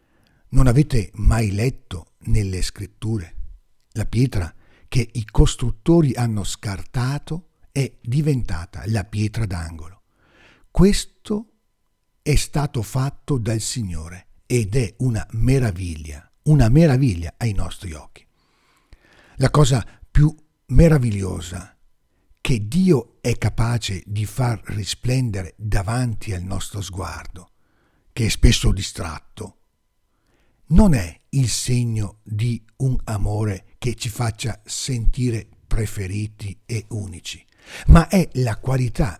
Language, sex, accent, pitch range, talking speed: Italian, male, native, 100-135 Hz, 105 wpm